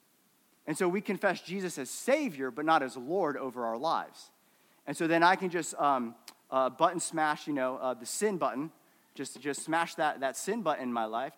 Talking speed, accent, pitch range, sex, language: 210 wpm, American, 130-185 Hz, male, English